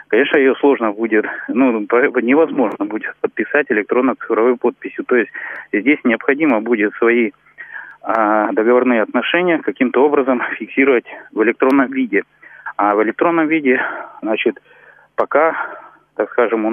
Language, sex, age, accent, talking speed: Russian, male, 30-49, native, 120 wpm